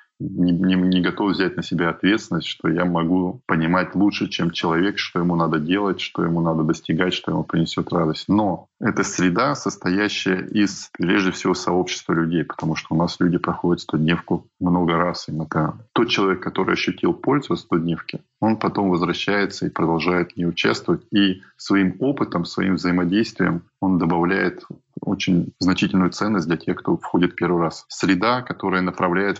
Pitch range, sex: 85-100 Hz, male